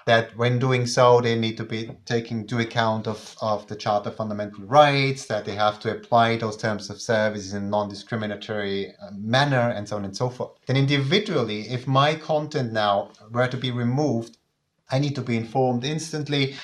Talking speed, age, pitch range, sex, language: 190 wpm, 30-49, 110-135 Hz, male, English